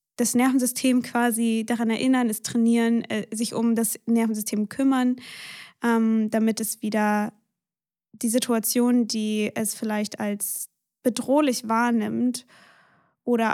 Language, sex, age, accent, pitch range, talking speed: German, female, 20-39, German, 220-245 Hz, 115 wpm